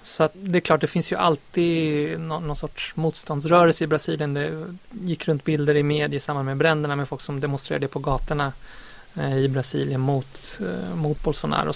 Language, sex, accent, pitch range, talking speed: Swedish, male, native, 145-165 Hz, 190 wpm